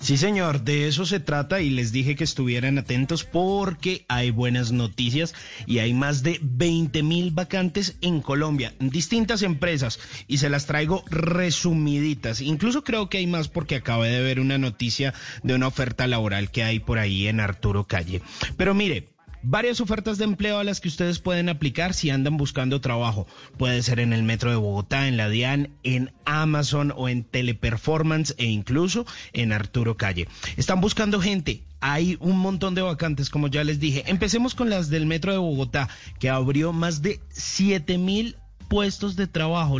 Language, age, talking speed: English, 30-49, 175 wpm